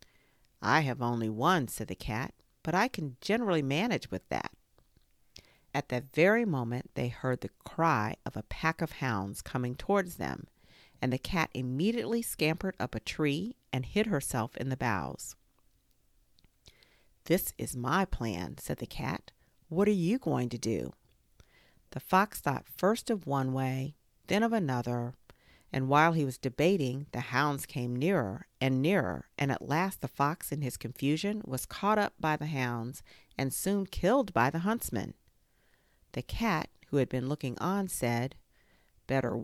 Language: English